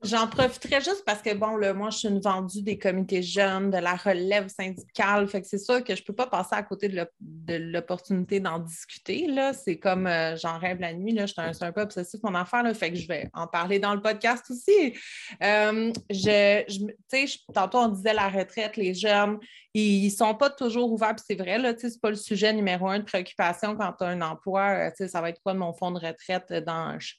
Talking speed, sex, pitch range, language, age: 245 wpm, female, 185-225 Hz, French, 30-49